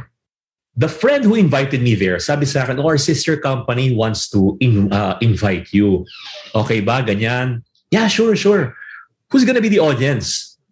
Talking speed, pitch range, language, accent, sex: 160 wpm, 110-170 Hz, English, Filipino, male